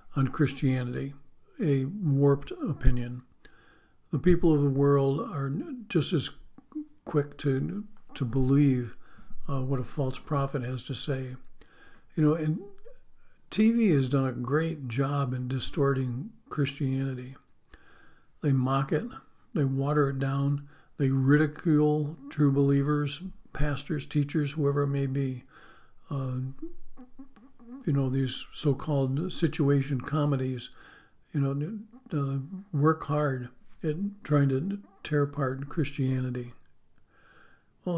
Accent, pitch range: American, 135-160 Hz